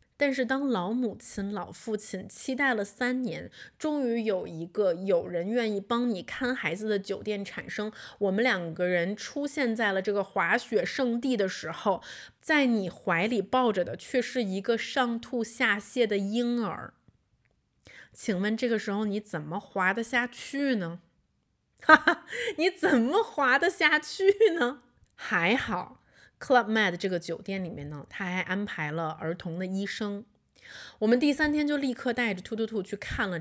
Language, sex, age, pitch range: Chinese, female, 20-39, 185-250 Hz